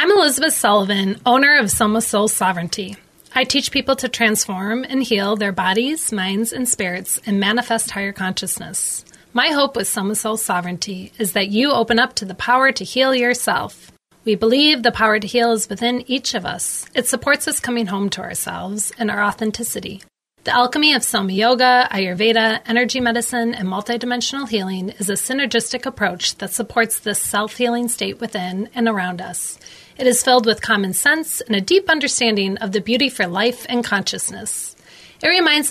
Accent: American